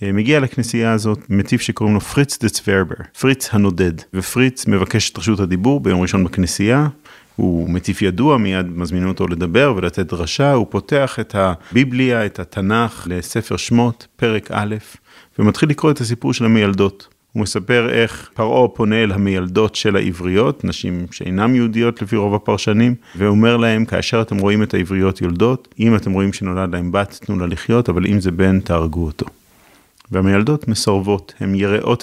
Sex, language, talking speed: male, Hebrew, 140 wpm